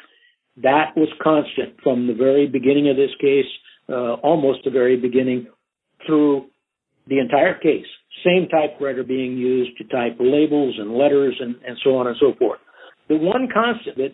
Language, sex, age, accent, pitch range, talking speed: English, male, 60-79, American, 130-160 Hz, 165 wpm